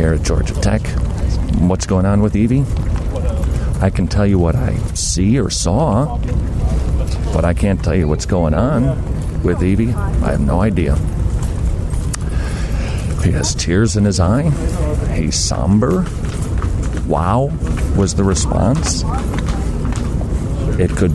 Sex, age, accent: male, 50-69, American